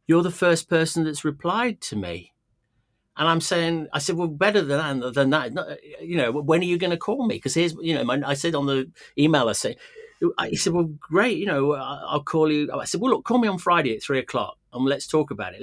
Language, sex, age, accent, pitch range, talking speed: English, male, 40-59, British, 110-155 Hz, 250 wpm